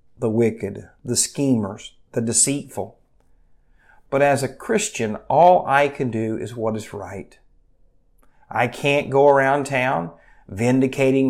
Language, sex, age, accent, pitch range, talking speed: English, male, 50-69, American, 105-130 Hz, 125 wpm